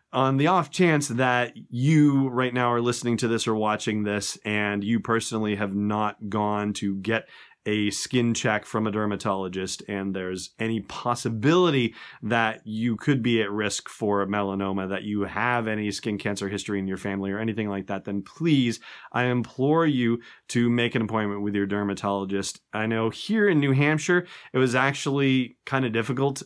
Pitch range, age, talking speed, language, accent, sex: 100-120 Hz, 30-49, 180 wpm, English, American, male